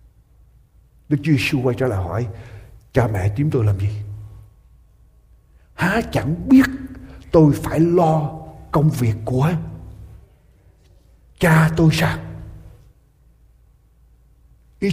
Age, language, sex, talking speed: 60-79, Vietnamese, male, 105 wpm